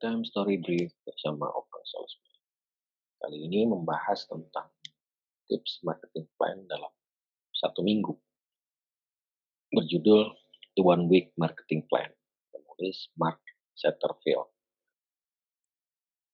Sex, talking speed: male, 95 wpm